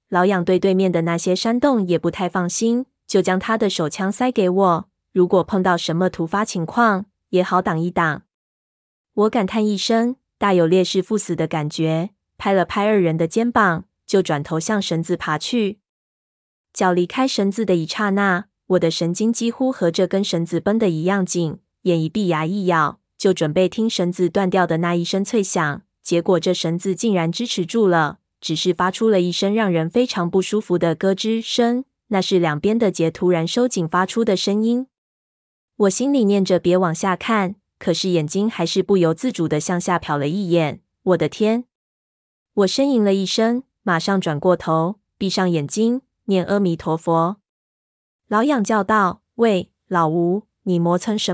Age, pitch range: 20-39, 175-215 Hz